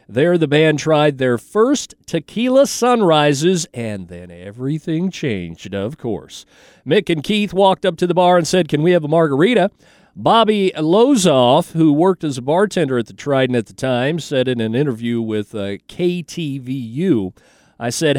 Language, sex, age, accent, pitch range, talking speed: English, male, 40-59, American, 115-180 Hz, 170 wpm